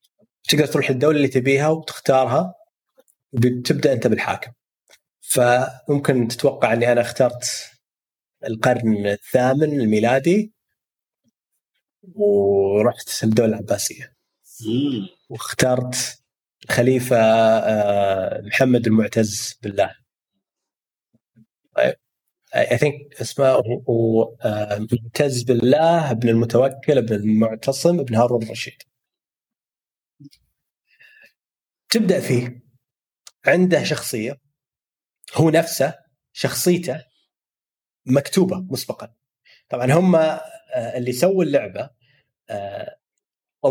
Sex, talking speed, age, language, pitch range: male, 70 wpm, 30-49, Arabic, 120-150 Hz